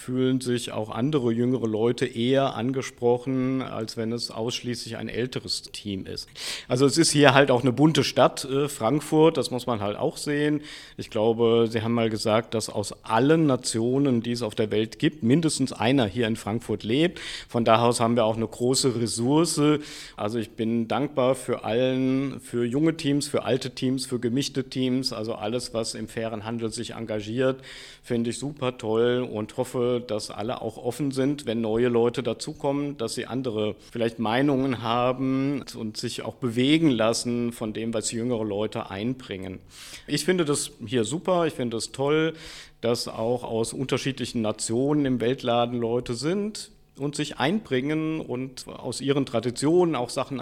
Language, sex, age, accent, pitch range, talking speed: German, male, 50-69, German, 115-135 Hz, 170 wpm